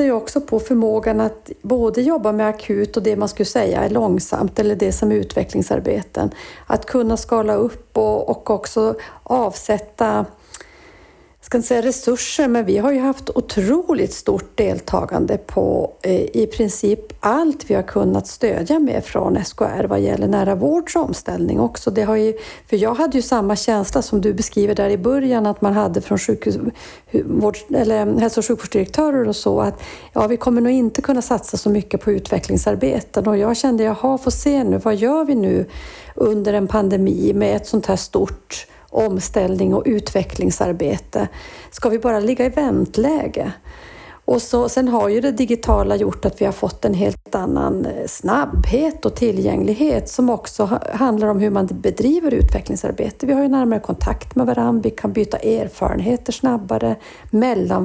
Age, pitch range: 40-59, 210-250 Hz